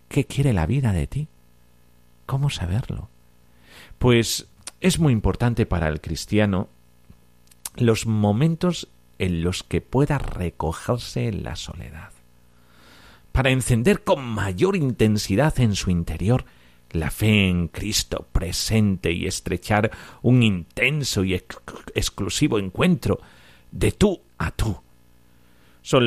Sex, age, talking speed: male, 50-69, 115 wpm